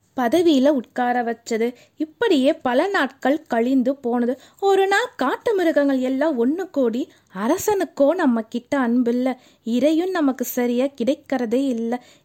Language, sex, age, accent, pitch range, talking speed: Tamil, female, 20-39, native, 220-280 Hz, 120 wpm